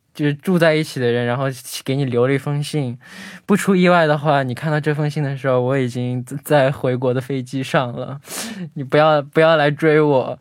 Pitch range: 120-150 Hz